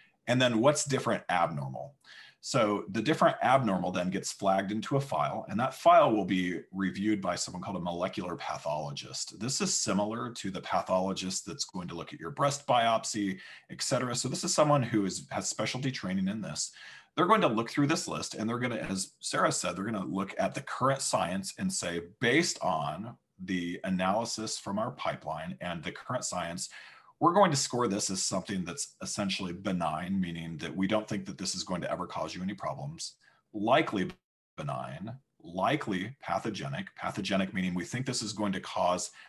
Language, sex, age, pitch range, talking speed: English, male, 40-59, 95-120 Hz, 190 wpm